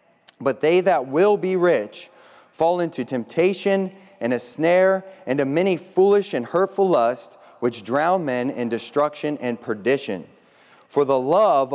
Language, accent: English, American